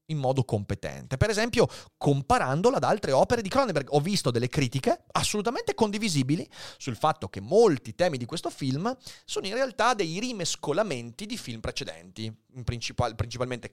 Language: Italian